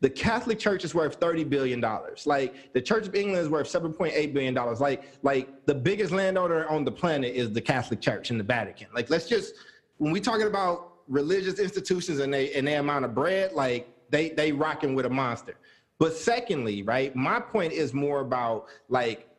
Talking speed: 195 wpm